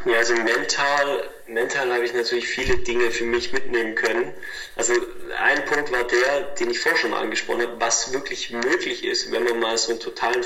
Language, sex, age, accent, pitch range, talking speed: German, male, 30-49, German, 355-430 Hz, 200 wpm